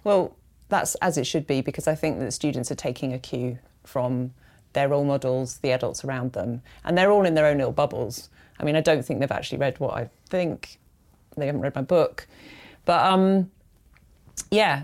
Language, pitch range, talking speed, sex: English, 135-160 Hz, 200 wpm, female